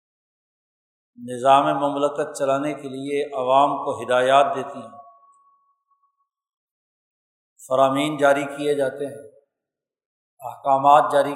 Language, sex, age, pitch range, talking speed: Urdu, male, 50-69, 140-160 Hz, 90 wpm